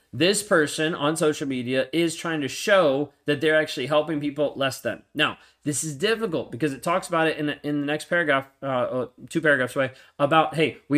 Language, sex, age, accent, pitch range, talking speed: English, male, 30-49, American, 125-155 Hz, 210 wpm